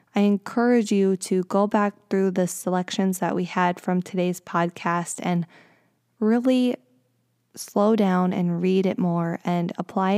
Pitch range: 185-215 Hz